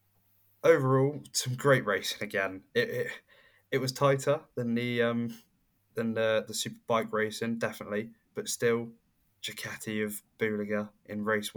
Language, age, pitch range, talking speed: English, 10-29, 105-125 Hz, 140 wpm